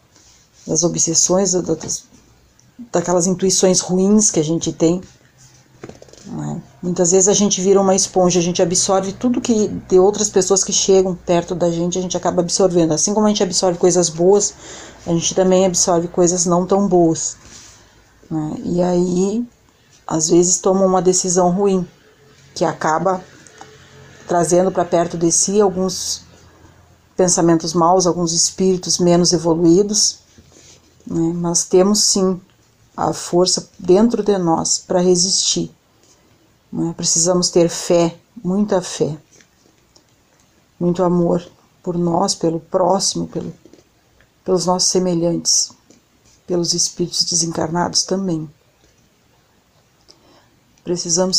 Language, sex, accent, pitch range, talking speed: Portuguese, female, Brazilian, 170-190 Hz, 125 wpm